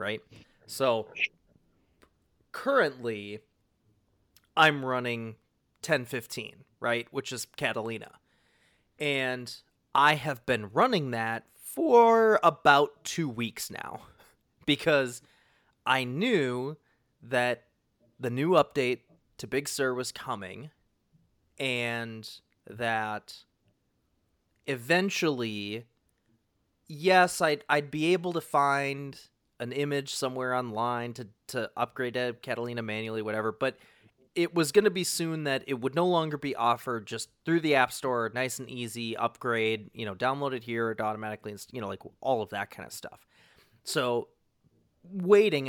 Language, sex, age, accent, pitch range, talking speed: English, male, 30-49, American, 115-145 Hz, 125 wpm